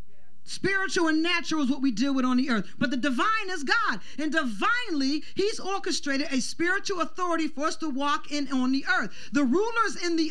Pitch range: 205-345 Hz